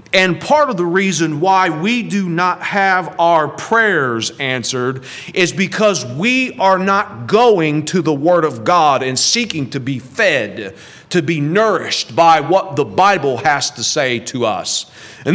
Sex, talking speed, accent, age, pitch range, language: male, 165 wpm, American, 40-59, 145-195 Hz, English